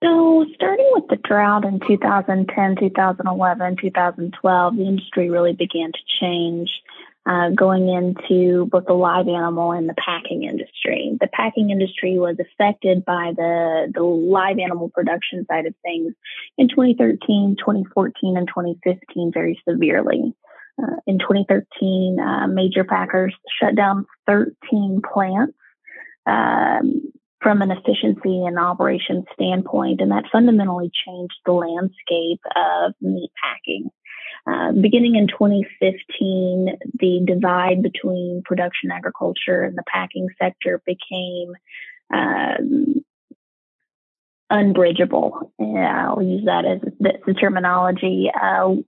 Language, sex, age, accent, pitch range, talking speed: English, female, 20-39, American, 180-205 Hz, 120 wpm